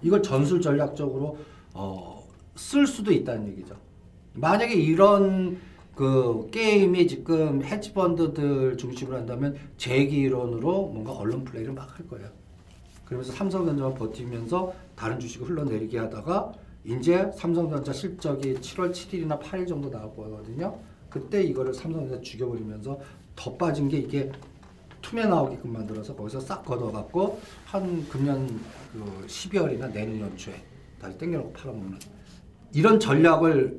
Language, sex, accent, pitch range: Korean, male, native, 115-170 Hz